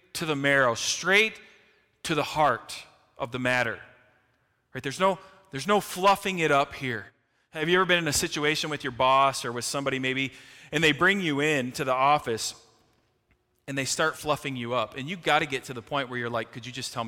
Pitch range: 125-160 Hz